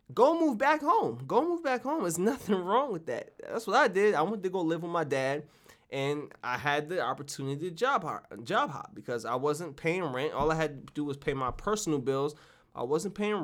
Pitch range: 145-190 Hz